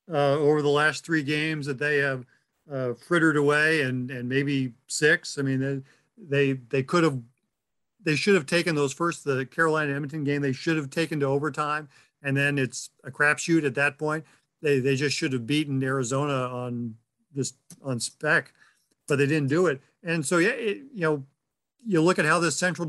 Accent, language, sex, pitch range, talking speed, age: American, English, male, 140-180 Hz, 195 wpm, 50-69